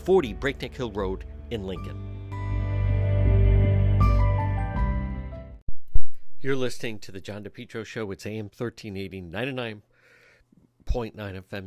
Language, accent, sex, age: English, American, male, 60-79